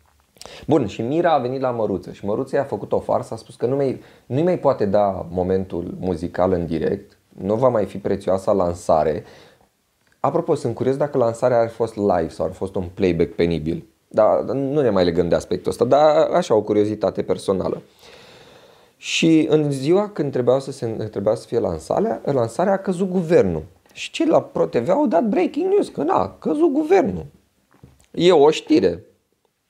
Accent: native